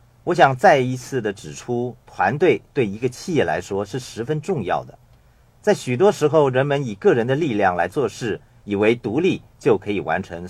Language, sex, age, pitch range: Chinese, male, 50-69, 115-140 Hz